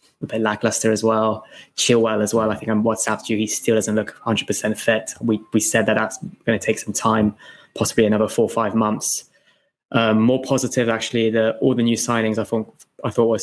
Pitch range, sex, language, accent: 110-115 Hz, male, English, British